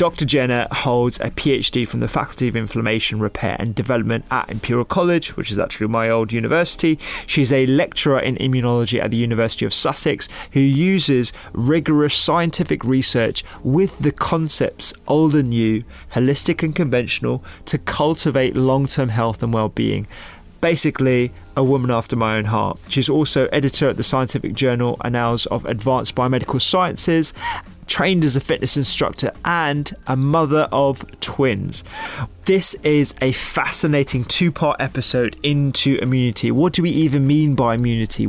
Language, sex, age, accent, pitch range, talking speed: English, male, 20-39, British, 120-150 Hz, 150 wpm